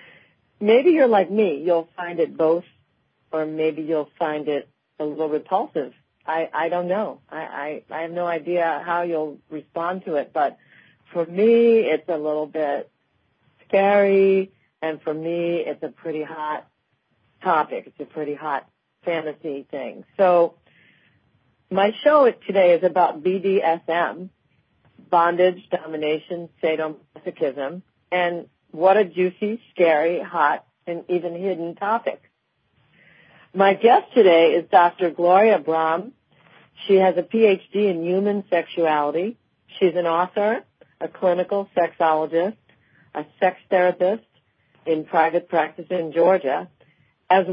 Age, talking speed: 40-59, 130 wpm